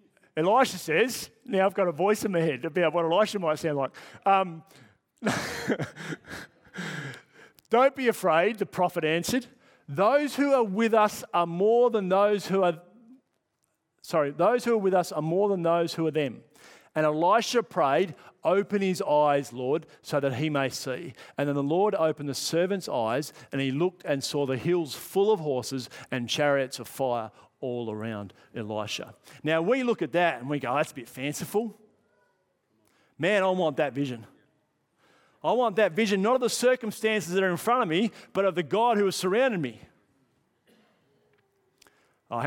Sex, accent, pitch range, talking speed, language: male, Australian, 140-205 Hz, 175 wpm, English